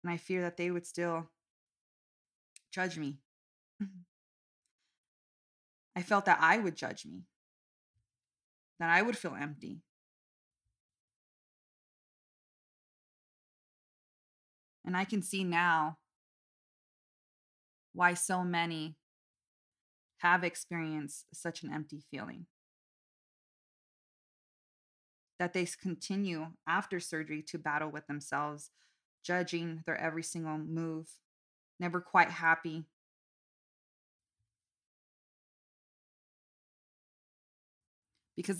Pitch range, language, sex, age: 145-175 Hz, English, female, 20-39